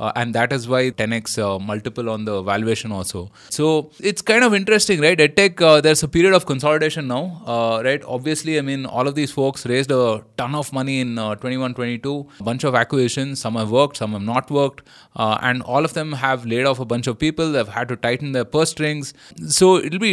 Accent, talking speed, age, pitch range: Indian, 220 wpm, 20-39, 115-145 Hz